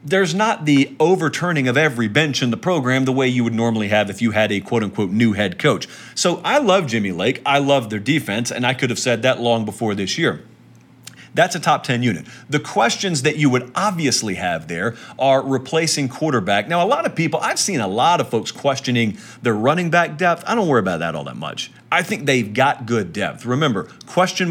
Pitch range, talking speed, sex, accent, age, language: 115-150 Hz, 225 wpm, male, American, 40-59, English